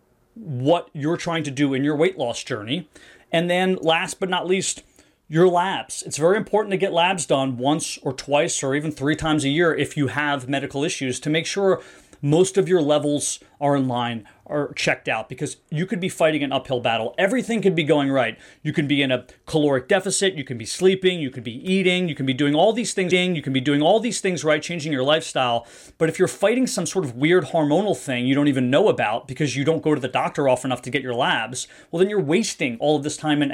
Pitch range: 130-170 Hz